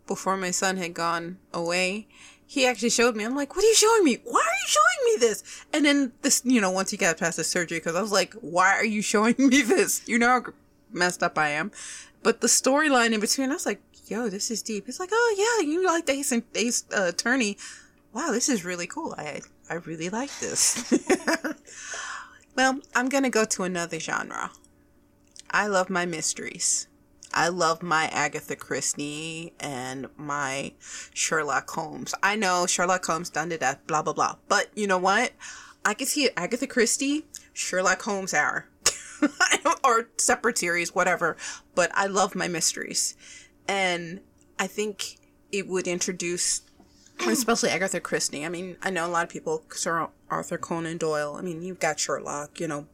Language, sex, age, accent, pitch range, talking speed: English, female, 20-39, American, 175-255 Hz, 185 wpm